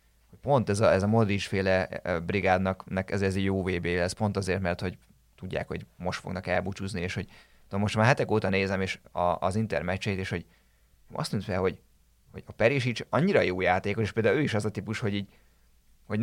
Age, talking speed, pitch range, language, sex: 30-49, 205 wpm, 95-115 Hz, Hungarian, male